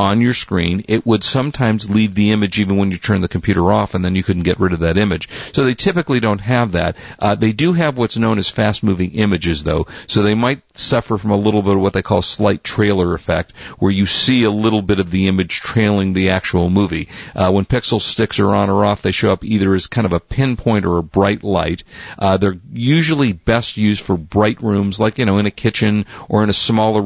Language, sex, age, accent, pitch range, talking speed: English, male, 50-69, American, 95-115 Hz, 240 wpm